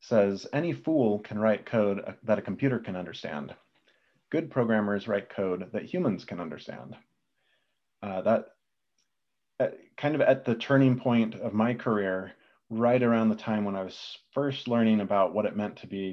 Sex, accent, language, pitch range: male, American, English, 100-120 Hz